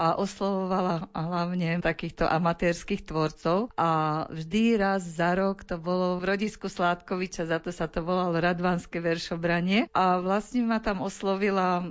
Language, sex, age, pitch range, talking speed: Slovak, female, 50-69, 165-195 Hz, 140 wpm